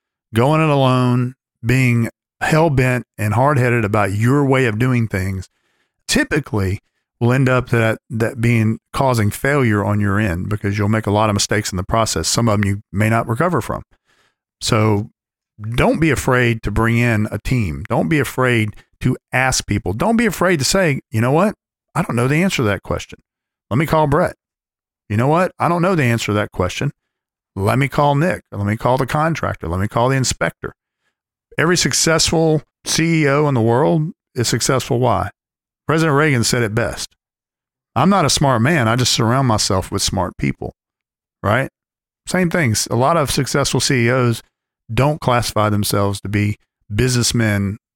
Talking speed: 180 wpm